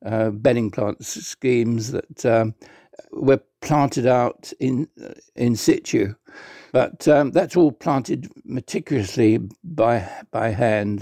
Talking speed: 120 wpm